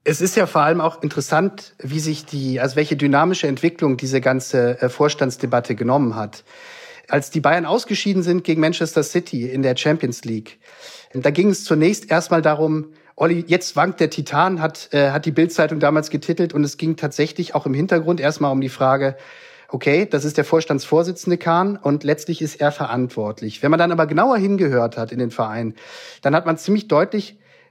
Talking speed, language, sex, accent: 185 wpm, German, male, German